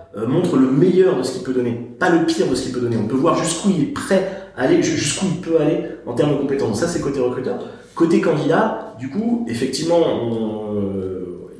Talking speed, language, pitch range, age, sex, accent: 235 wpm, French, 110-145 Hz, 30-49, male, French